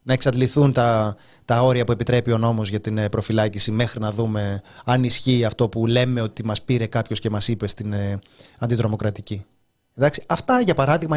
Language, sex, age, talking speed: Greek, male, 20-39, 170 wpm